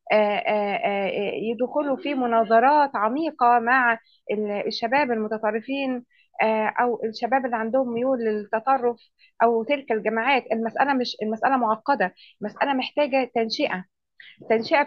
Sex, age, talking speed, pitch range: female, 20-39, 95 wpm, 225-280 Hz